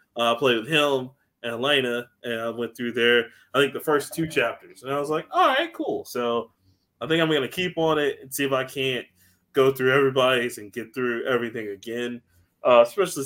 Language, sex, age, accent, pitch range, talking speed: English, male, 20-39, American, 115-150 Hz, 220 wpm